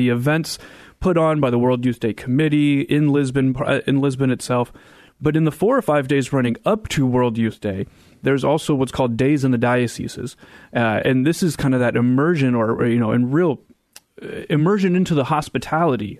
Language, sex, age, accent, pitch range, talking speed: English, male, 30-49, American, 125-150 Hz, 205 wpm